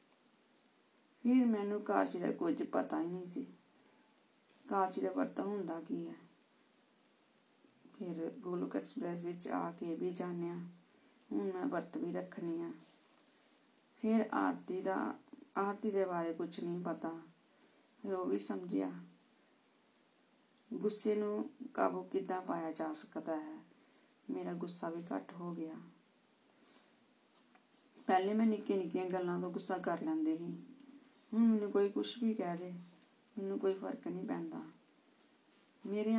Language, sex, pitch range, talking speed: Punjabi, female, 170-225 Hz, 120 wpm